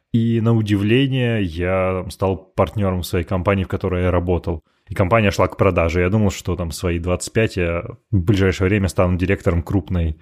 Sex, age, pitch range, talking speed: male, 20-39, 90-110 Hz, 175 wpm